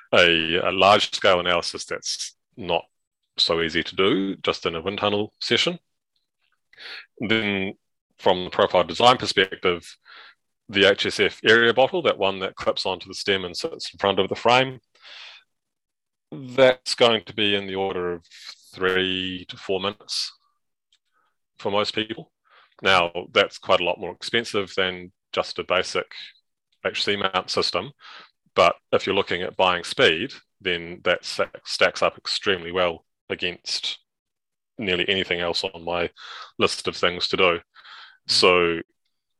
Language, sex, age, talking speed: English, male, 30-49, 145 wpm